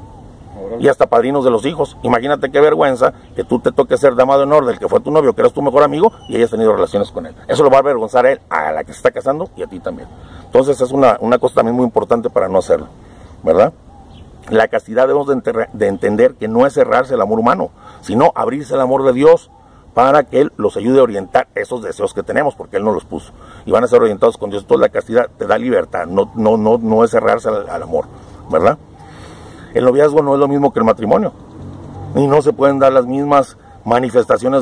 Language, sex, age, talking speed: Spanish, male, 50-69, 240 wpm